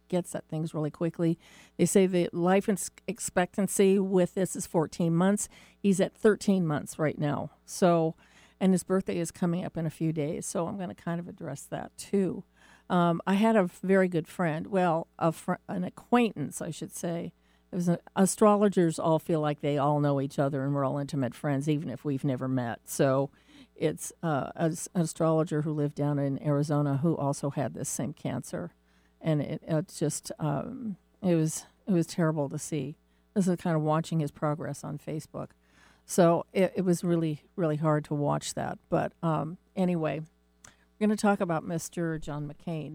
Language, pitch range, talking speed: English, 145-180 Hz, 190 wpm